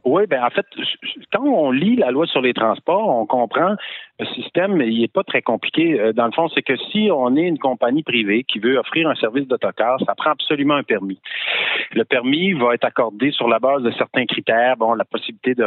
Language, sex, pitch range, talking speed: French, male, 115-190 Hz, 225 wpm